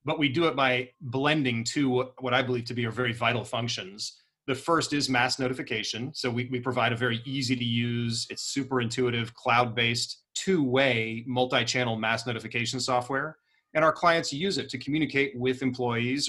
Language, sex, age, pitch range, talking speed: English, male, 30-49, 120-140 Hz, 175 wpm